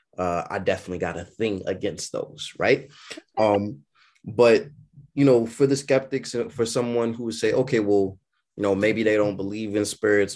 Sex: male